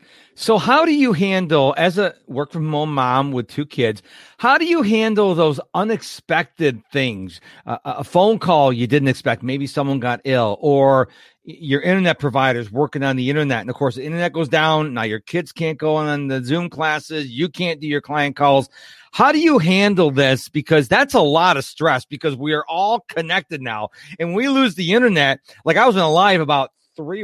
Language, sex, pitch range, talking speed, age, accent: English, male, 140-205 Hz, 205 wpm, 40-59, American